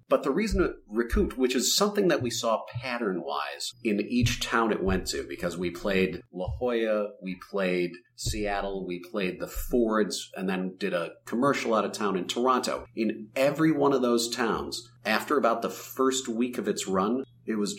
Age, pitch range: 40-59, 105-125 Hz